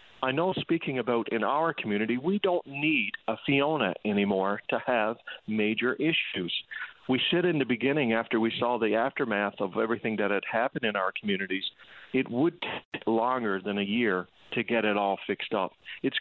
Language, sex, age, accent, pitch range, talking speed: English, male, 50-69, American, 110-130 Hz, 180 wpm